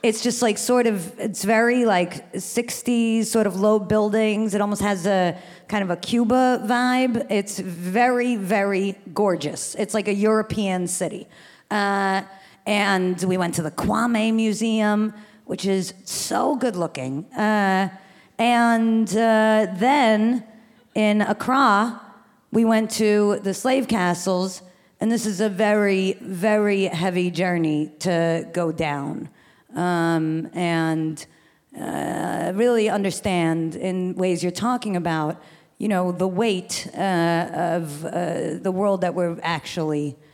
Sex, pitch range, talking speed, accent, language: female, 170-215 Hz, 130 wpm, American, English